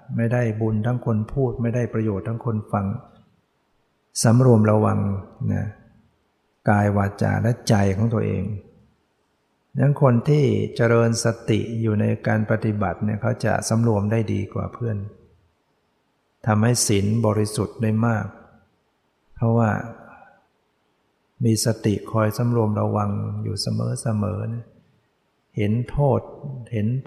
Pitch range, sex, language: 110-120 Hz, male, English